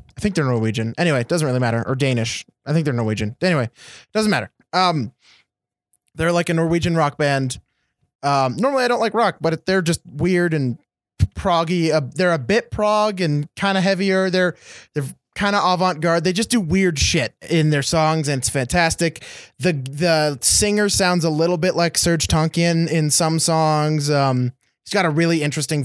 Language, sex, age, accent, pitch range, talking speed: English, male, 20-39, American, 140-175 Hz, 190 wpm